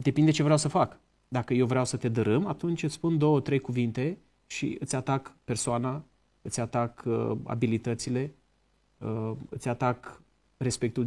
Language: Romanian